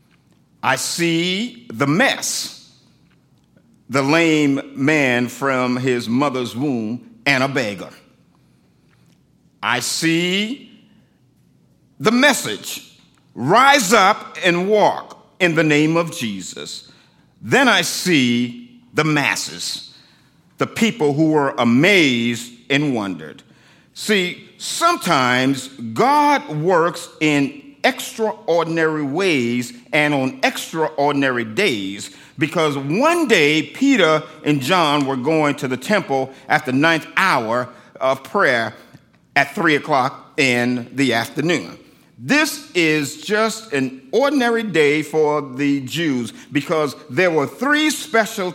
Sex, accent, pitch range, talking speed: male, American, 130-200 Hz, 110 wpm